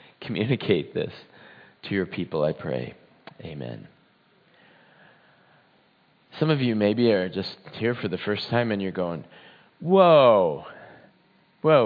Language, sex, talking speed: English, male, 120 wpm